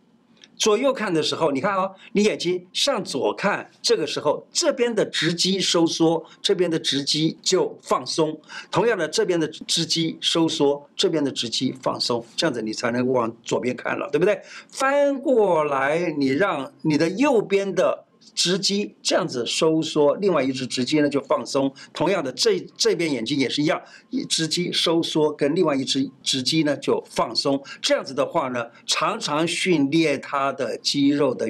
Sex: male